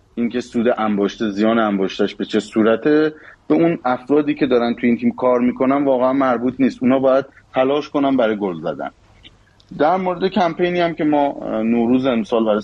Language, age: Persian, 30-49